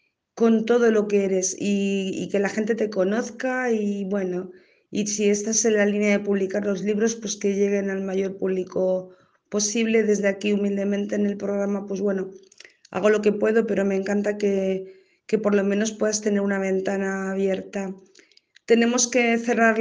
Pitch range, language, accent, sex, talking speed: 195-225 Hz, Spanish, Spanish, female, 180 wpm